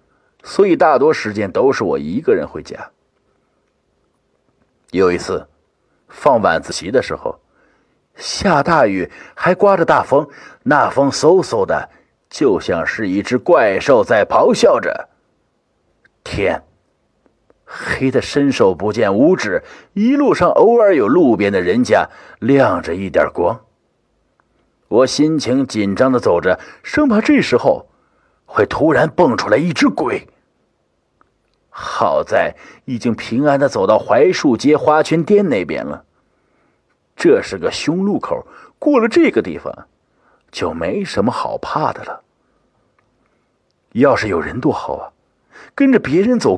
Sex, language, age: male, Chinese, 50-69